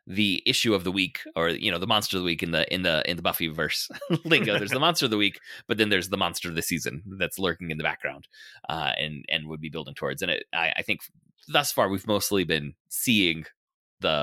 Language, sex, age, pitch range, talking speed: English, male, 30-49, 85-115 Hz, 255 wpm